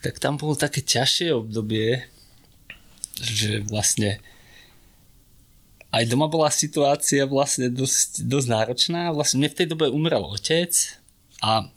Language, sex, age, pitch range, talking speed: Slovak, male, 30-49, 110-140 Hz, 115 wpm